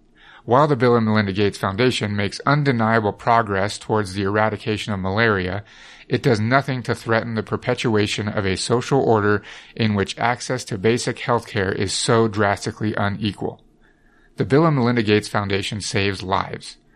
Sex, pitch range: male, 105-125 Hz